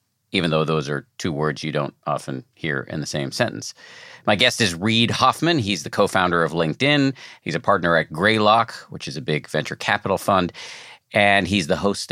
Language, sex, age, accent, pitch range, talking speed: English, male, 50-69, American, 90-125 Hz, 200 wpm